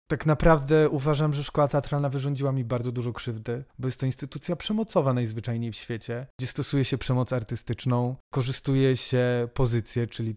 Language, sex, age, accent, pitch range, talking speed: Polish, male, 20-39, native, 125-150 Hz, 160 wpm